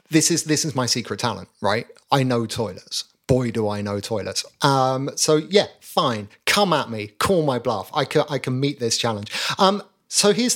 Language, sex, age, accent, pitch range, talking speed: English, male, 30-49, British, 120-155 Hz, 205 wpm